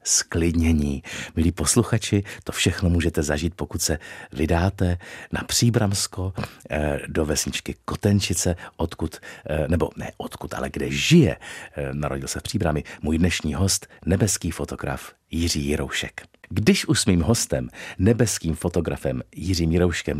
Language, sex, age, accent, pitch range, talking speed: Czech, male, 50-69, native, 80-95 Hz, 125 wpm